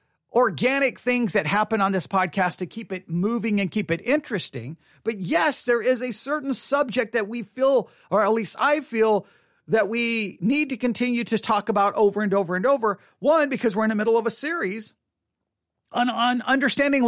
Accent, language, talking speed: American, English, 195 wpm